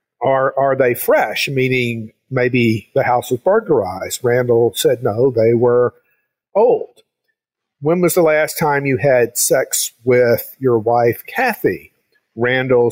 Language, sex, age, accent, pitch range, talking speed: English, male, 50-69, American, 120-155 Hz, 135 wpm